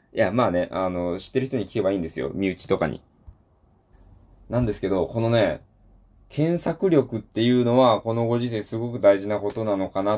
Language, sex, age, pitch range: Japanese, male, 20-39, 100-130 Hz